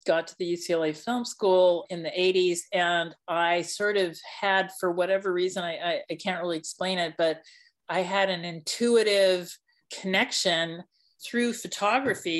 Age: 50-69